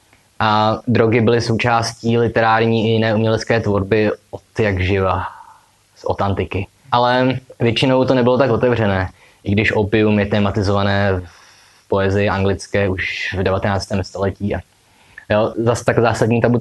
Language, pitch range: Czech, 105-125 Hz